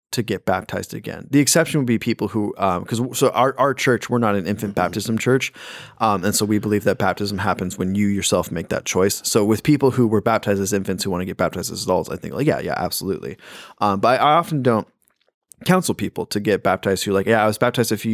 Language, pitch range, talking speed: English, 95-120 Hz, 250 wpm